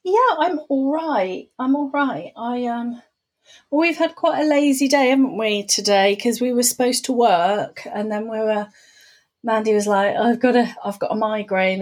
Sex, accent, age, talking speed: female, British, 30-49, 205 wpm